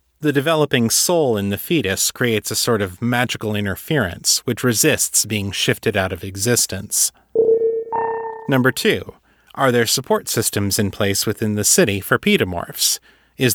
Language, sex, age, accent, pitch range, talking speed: English, male, 30-49, American, 105-150 Hz, 145 wpm